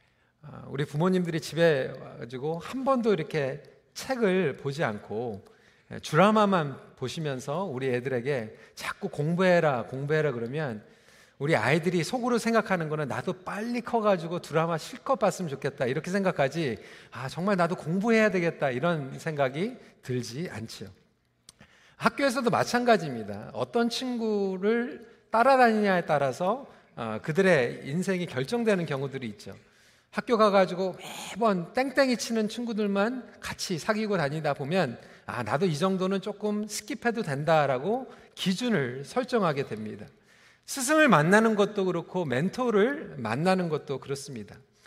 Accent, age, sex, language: native, 40-59, male, Korean